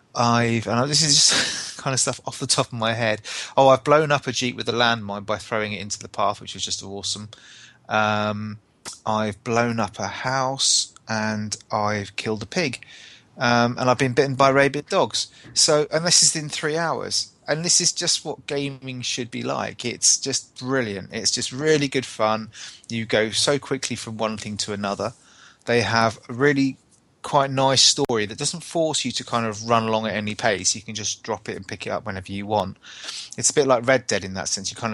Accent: British